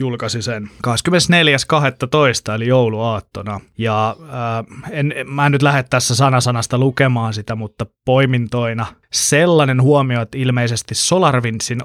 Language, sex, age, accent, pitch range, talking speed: Finnish, male, 20-39, native, 110-130 Hz, 105 wpm